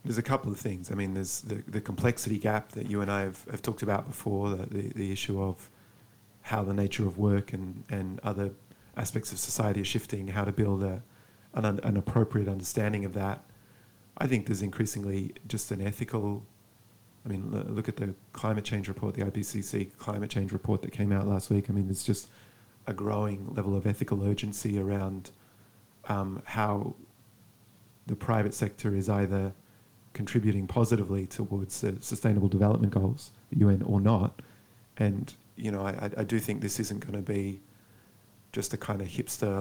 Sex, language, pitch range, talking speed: male, English, 100-110 Hz, 180 wpm